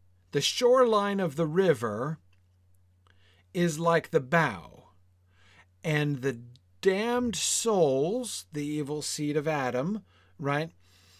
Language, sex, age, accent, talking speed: English, male, 40-59, American, 100 wpm